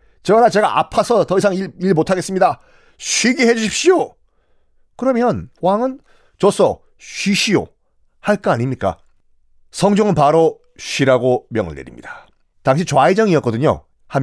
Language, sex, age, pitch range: Korean, male, 30-49, 130-200 Hz